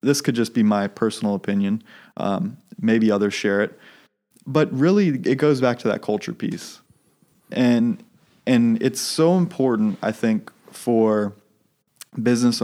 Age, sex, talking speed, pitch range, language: 20-39, male, 145 wpm, 110-155 Hz, English